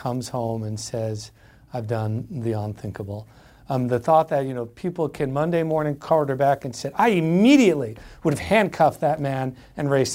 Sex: male